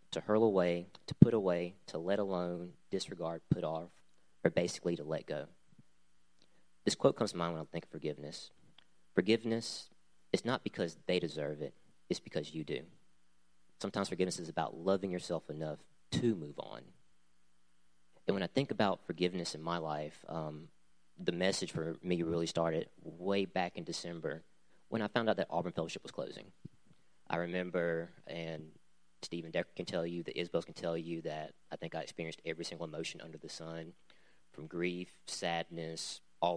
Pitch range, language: 65-90 Hz, English